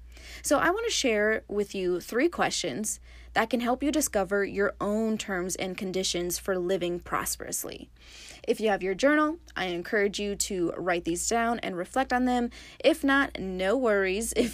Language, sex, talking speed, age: English, female, 180 wpm, 20-39